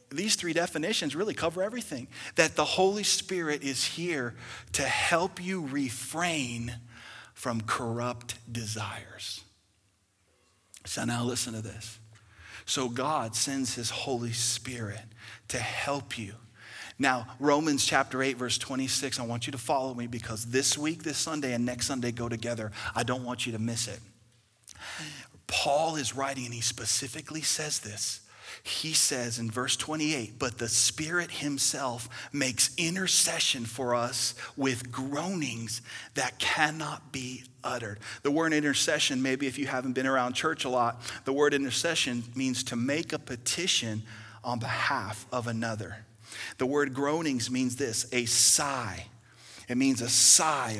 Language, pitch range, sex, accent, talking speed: English, 115-140 Hz, male, American, 145 wpm